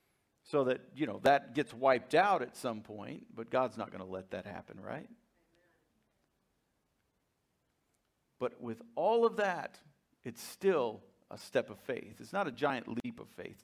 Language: English